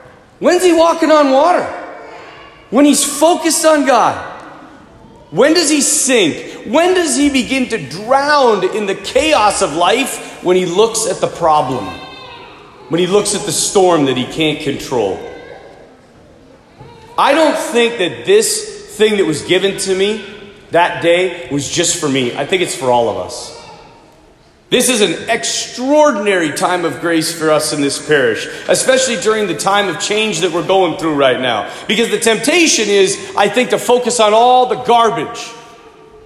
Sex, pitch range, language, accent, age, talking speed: male, 195-300 Hz, English, American, 40-59, 165 wpm